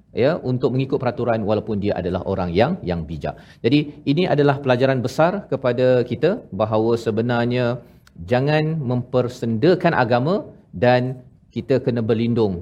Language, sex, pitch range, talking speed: Malayalam, male, 100-130 Hz, 130 wpm